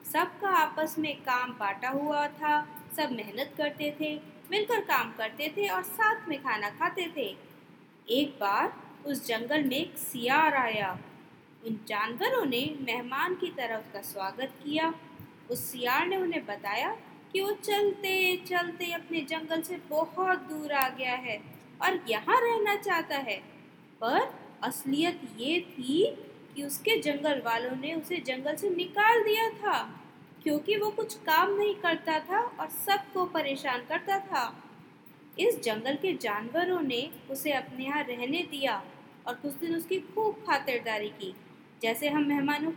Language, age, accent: Hindi, 20-39, native